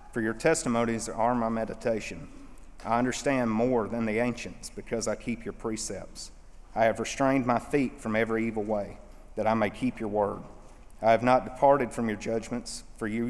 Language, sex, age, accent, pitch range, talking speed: English, male, 40-59, American, 110-125 Hz, 185 wpm